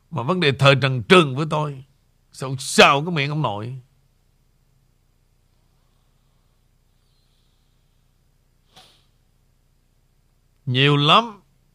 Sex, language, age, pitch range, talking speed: male, Vietnamese, 60-79, 130-175 Hz, 80 wpm